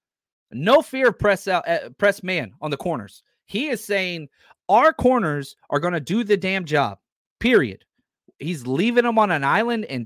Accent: American